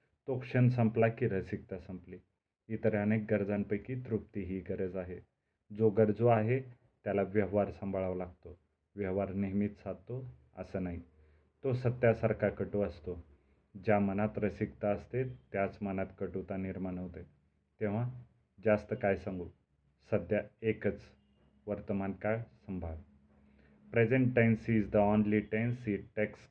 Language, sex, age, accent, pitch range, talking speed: Marathi, male, 30-49, native, 90-110 Hz, 115 wpm